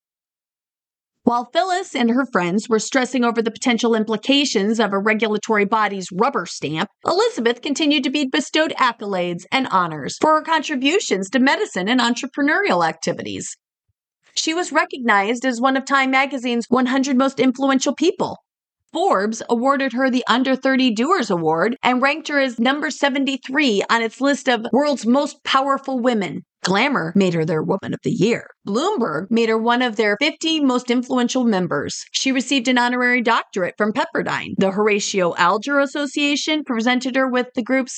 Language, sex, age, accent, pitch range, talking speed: English, female, 40-59, American, 225-280 Hz, 160 wpm